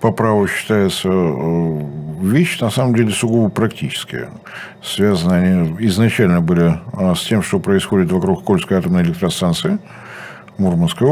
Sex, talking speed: male, 120 wpm